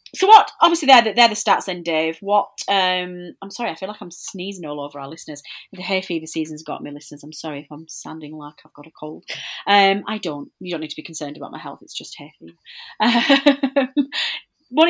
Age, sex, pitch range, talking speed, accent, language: 30-49, female, 155-195 Hz, 225 wpm, British, English